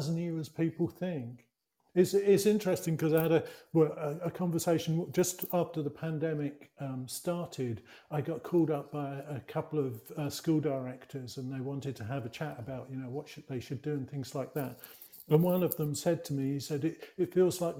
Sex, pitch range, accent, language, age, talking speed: male, 140-175 Hz, British, English, 50-69, 215 wpm